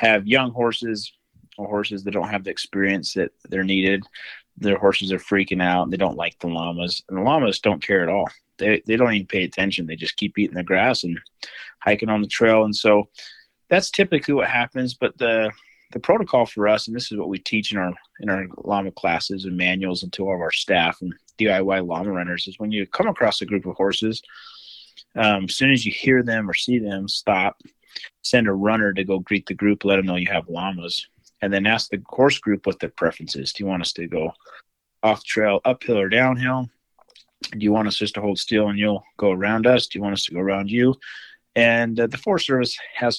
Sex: male